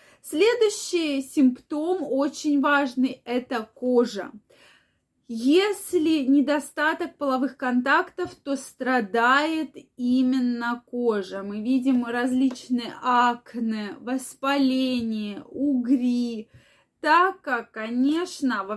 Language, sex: Russian, female